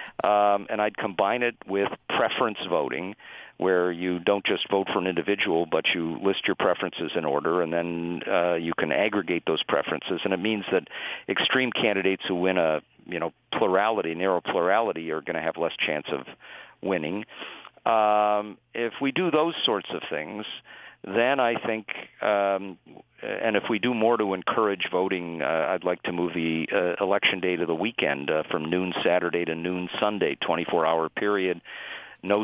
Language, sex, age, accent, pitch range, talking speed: English, male, 50-69, American, 85-100 Hz, 175 wpm